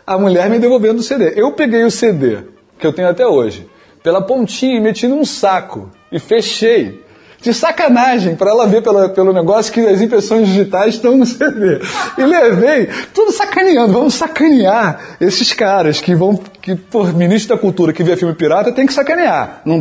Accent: Brazilian